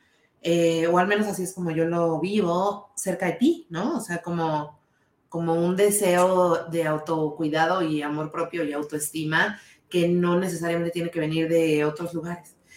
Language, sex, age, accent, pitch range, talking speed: Spanish, female, 30-49, Mexican, 170-235 Hz, 170 wpm